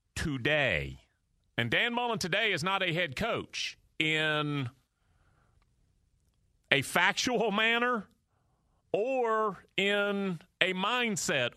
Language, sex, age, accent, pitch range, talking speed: English, male, 40-59, American, 145-230 Hz, 95 wpm